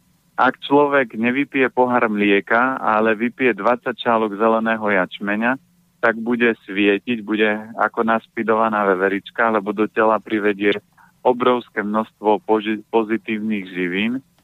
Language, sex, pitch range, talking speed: Slovak, male, 110-125 Hz, 110 wpm